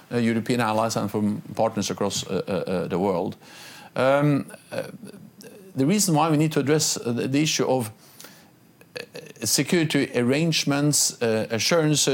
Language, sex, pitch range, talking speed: English, male, 115-140 Hz, 140 wpm